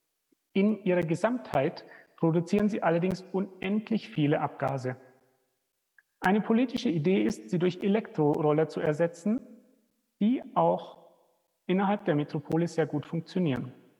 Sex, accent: male, German